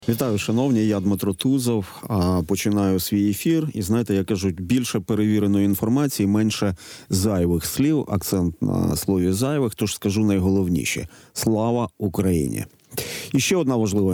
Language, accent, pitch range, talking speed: Ukrainian, native, 95-120 Hz, 130 wpm